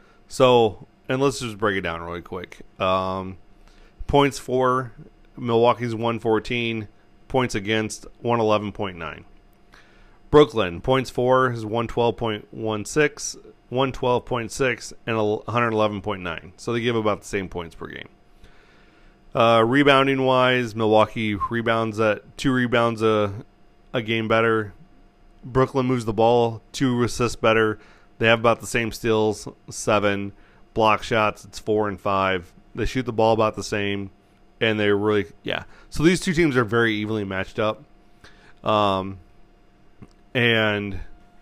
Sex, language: male, English